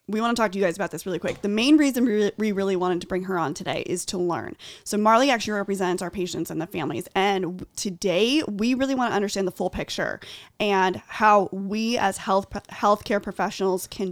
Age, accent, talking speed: 20-39, American, 220 wpm